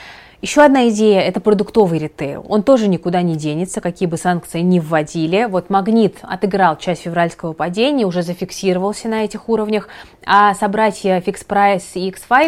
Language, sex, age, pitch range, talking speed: Russian, female, 20-39, 170-205 Hz, 160 wpm